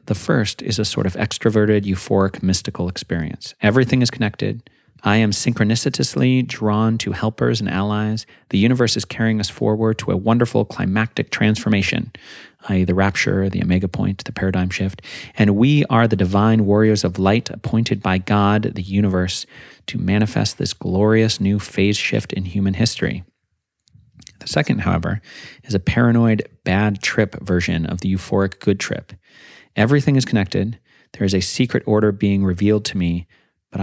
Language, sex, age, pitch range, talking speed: English, male, 30-49, 95-120 Hz, 160 wpm